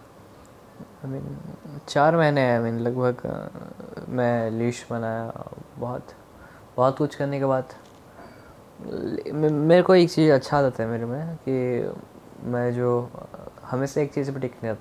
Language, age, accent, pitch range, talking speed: Hindi, 10-29, native, 115-130 Hz, 145 wpm